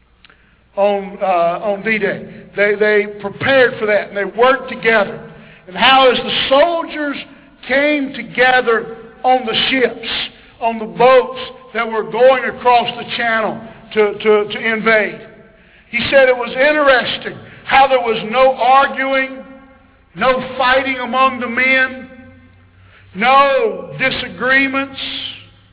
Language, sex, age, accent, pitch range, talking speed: English, male, 60-79, American, 210-265 Hz, 125 wpm